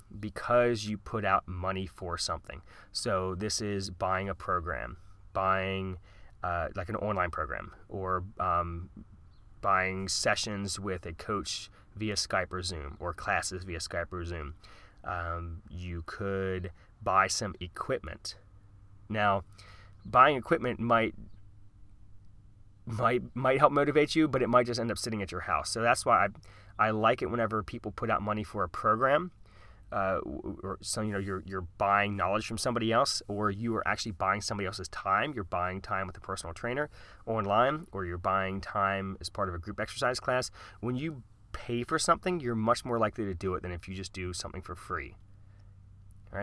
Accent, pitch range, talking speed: American, 95-110 Hz, 175 wpm